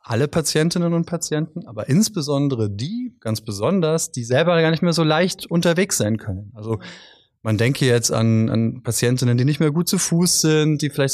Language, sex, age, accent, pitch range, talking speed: German, male, 30-49, German, 115-165 Hz, 190 wpm